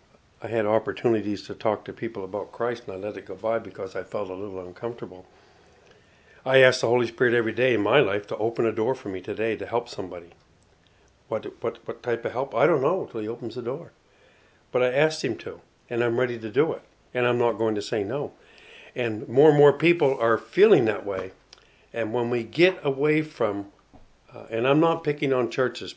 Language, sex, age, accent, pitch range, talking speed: English, male, 60-79, American, 110-140 Hz, 220 wpm